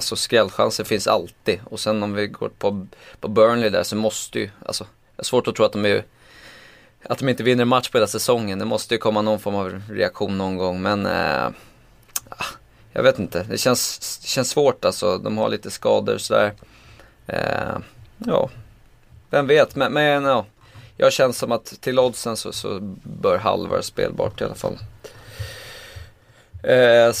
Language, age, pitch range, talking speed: Swedish, 20-39, 105-125 Hz, 185 wpm